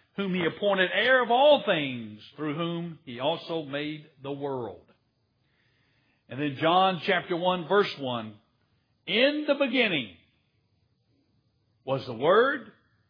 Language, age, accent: English, 60-79, American